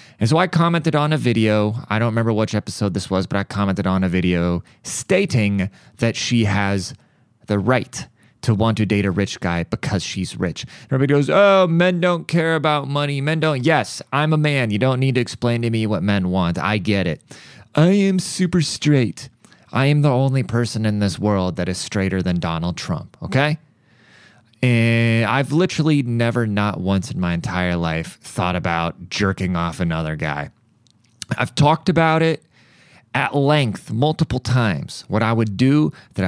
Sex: male